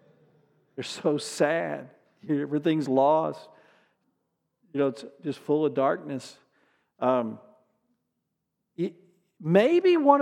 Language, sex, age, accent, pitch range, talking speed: English, male, 50-69, American, 165-230 Hz, 95 wpm